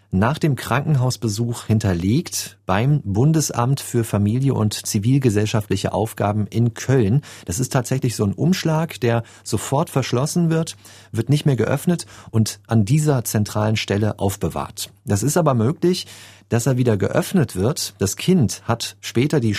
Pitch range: 105-130 Hz